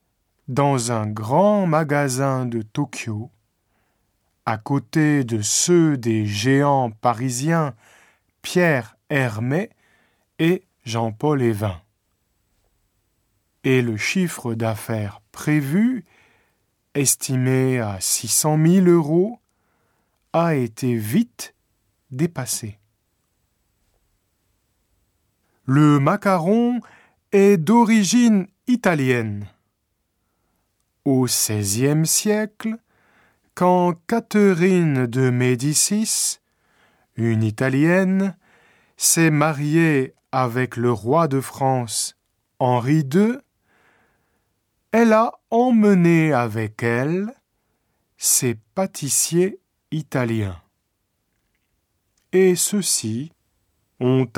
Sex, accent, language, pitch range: male, French, Japanese, 105-165 Hz